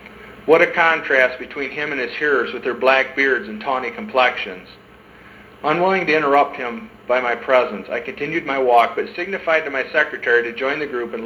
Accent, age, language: American, 50-69, English